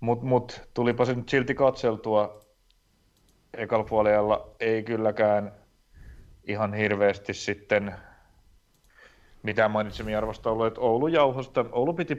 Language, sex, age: Finnish, male, 30-49